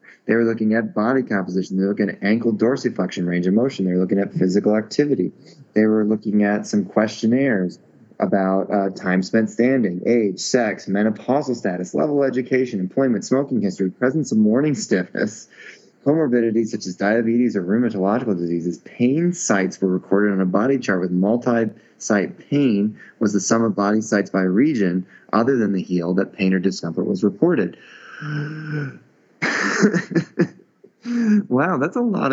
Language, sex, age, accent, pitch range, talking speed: English, male, 30-49, American, 95-120 Hz, 160 wpm